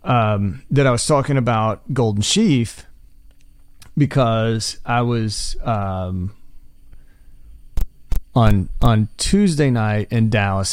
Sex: male